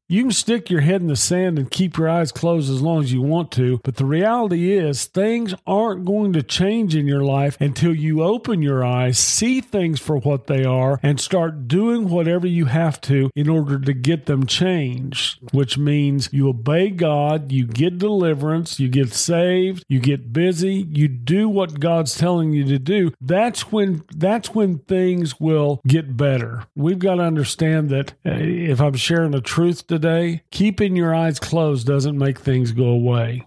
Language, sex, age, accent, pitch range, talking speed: English, male, 50-69, American, 135-170 Hz, 190 wpm